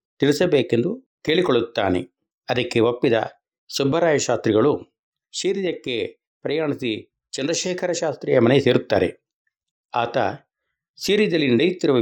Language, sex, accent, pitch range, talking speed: Kannada, male, native, 125-160 Hz, 65 wpm